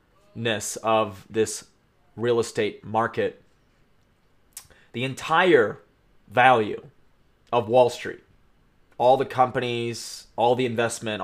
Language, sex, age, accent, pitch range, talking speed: English, male, 30-49, American, 115-140 Hz, 90 wpm